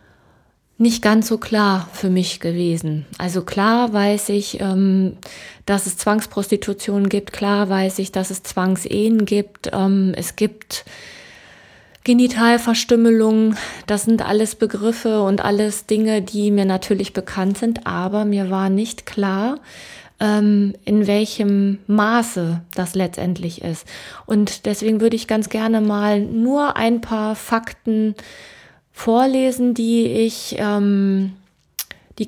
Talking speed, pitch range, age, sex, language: 120 wpm, 195-230 Hz, 20-39, female, German